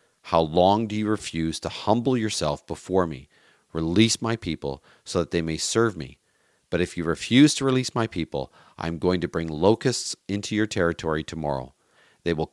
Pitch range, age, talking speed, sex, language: 85-105 Hz, 40-59, 180 wpm, male, English